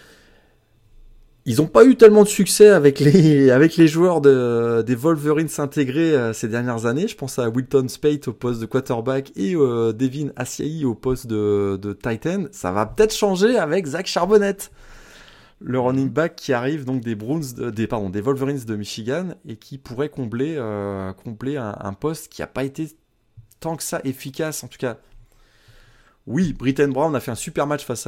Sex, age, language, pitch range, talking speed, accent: male, 20-39, French, 110-145 Hz, 190 wpm, French